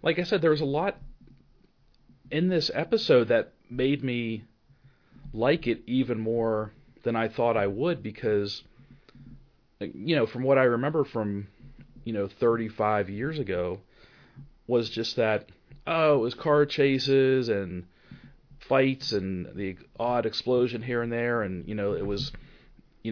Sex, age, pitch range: male, 40-59, 100-135 Hz